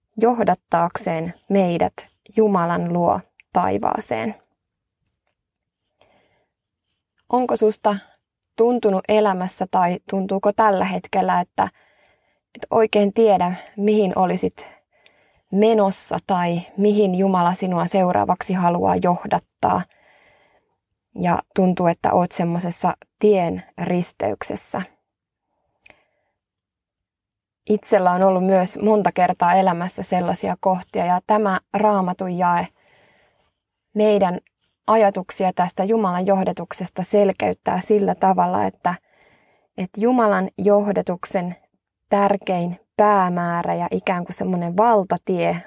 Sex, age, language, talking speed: female, 20-39, Finnish, 85 wpm